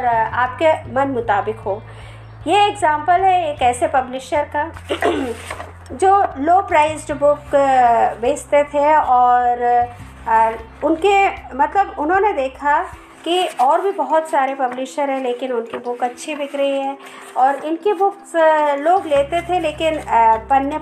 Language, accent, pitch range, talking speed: Hindi, native, 250-350 Hz, 125 wpm